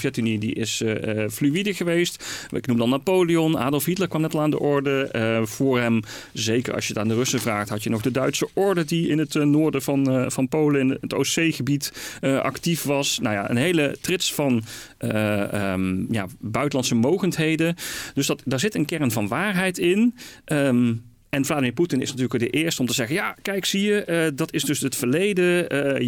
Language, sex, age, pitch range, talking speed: Dutch, male, 40-59, 115-155 Hz, 215 wpm